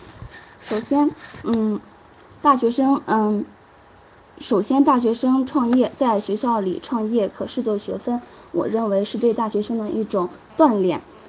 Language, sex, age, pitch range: Chinese, female, 10-29, 205-255 Hz